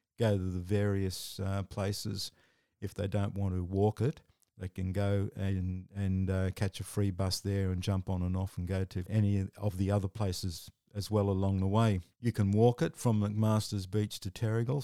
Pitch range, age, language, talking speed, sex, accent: 95-105 Hz, 50-69, English, 205 wpm, male, Australian